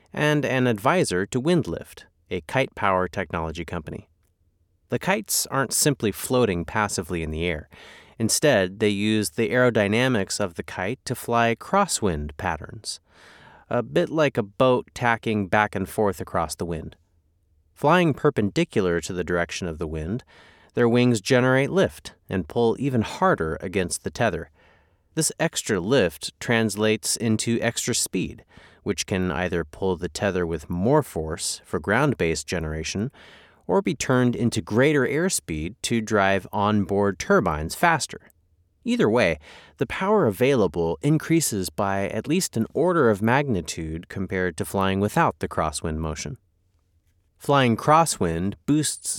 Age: 30-49